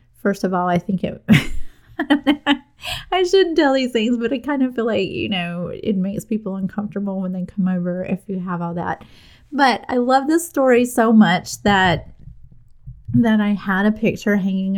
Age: 30-49